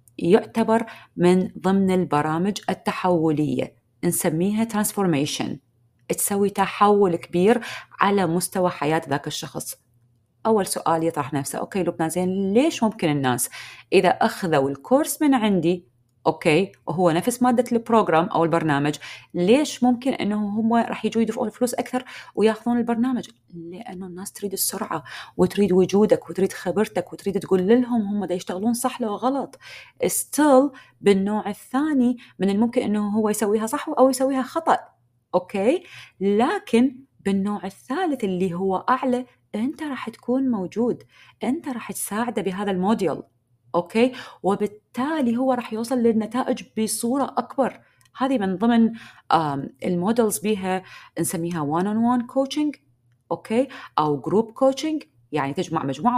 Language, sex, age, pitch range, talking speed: Arabic, female, 30-49, 170-245 Hz, 125 wpm